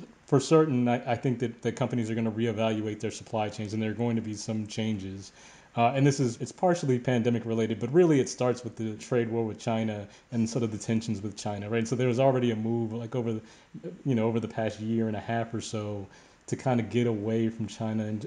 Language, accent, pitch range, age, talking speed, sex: English, American, 115-135 Hz, 30-49, 255 wpm, male